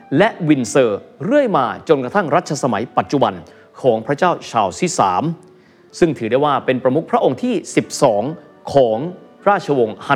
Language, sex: Thai, male